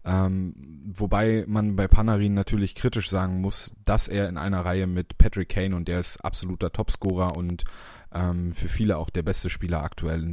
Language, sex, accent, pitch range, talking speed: German, male, German, 85-105 Hz, 175 wpm